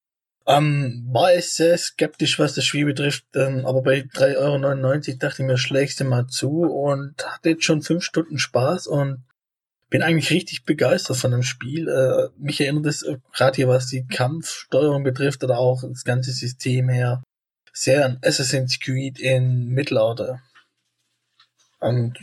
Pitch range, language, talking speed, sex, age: 125-145 Hz, German, 160 wpm, male, 20-39